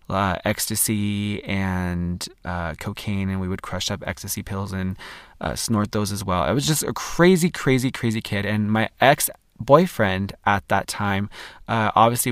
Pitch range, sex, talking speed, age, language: 100-120 Hz, male, 165 wpm, 20-39, English